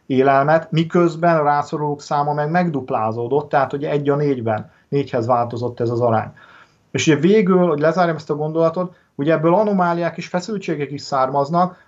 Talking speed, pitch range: 160 wpm, 130-165 Hz